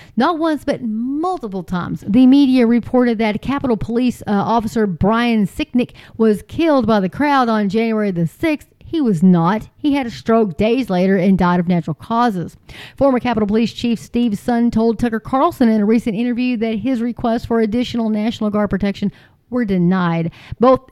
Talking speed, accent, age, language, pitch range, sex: 180 wpm, American, 40-59, English, 205-245 Hz, female